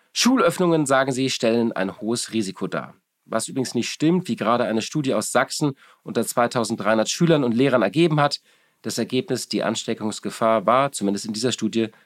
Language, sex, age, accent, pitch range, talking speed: German, male, 40-59, German, 115-160 Hz, 170 wpm